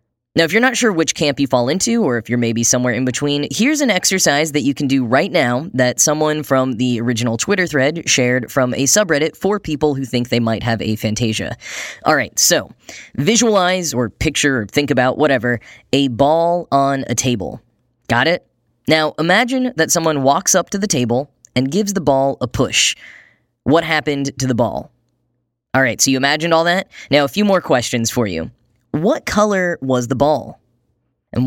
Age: 10-29